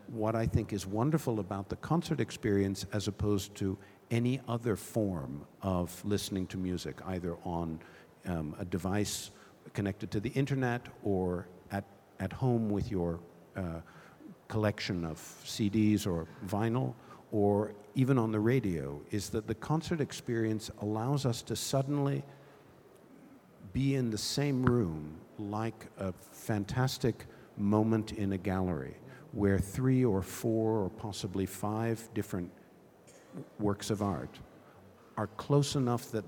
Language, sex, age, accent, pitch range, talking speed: English, male, 50-69, American, 95-120 Hz, 135 wpm